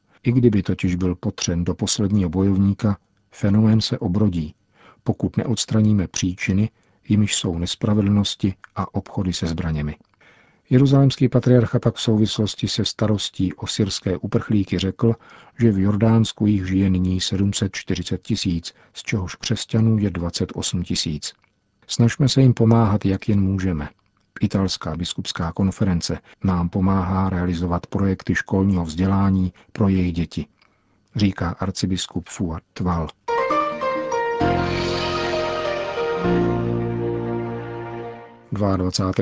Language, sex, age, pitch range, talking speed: Czech, male, 50-69, 90-115 Hz, 105 wpm